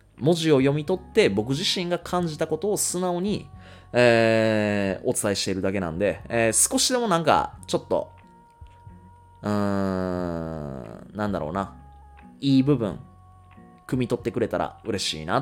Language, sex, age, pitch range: Japanese, male, 20-39, 95-130 Hz